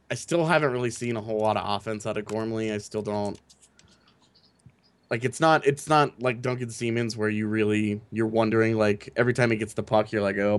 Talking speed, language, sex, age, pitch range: 220 wpm, English, male, 20-39, 100-120 Hz